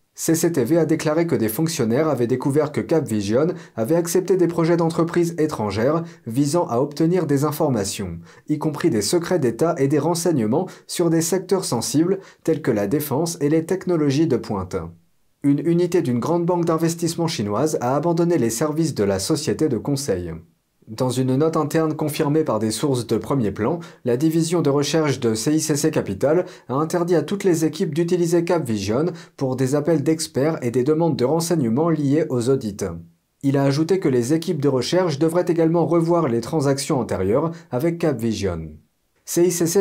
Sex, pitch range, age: male, 125-170 Hz, 40-59